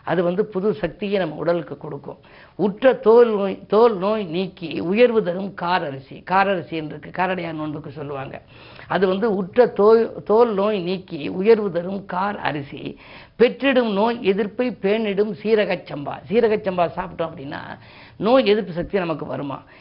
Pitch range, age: 160-205 Hz, 50-69